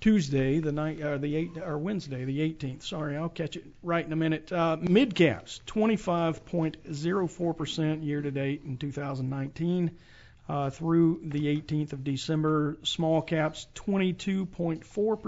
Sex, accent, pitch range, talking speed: male, American, 135-160 Hz, 140 wpm